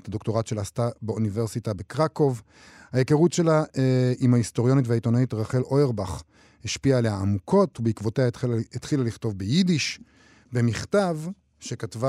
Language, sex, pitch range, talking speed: Hebrew, male, 110-140 Hz, 120 wpm